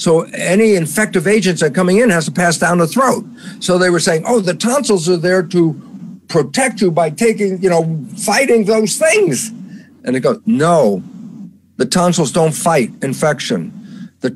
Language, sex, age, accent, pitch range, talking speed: English, male, 50-69, American, 180-220 Hz, 180 wpm